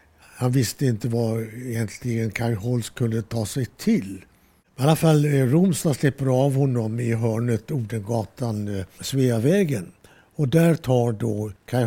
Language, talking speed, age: Swedish, 135 wpm, 60-79